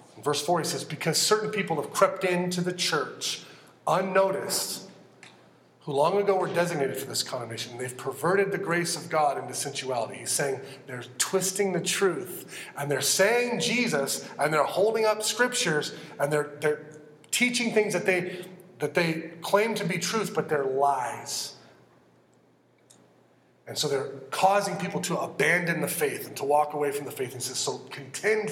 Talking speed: 170 wpm